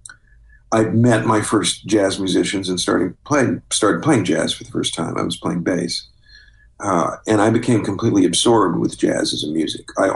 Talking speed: 185 wpm